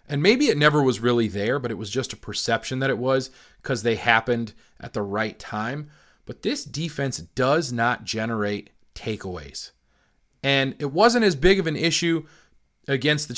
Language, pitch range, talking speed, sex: English, 110-150 Hz, 180 wpm, male